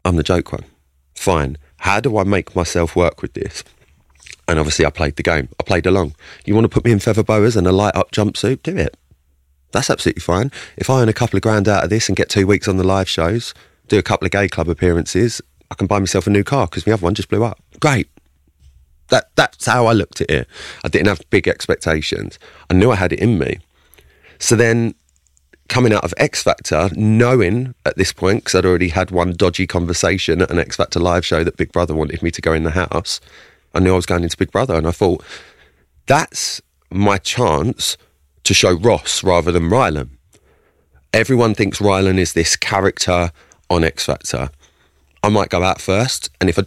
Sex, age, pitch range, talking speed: male, 30-49, 80-105 Hz, 215 wpm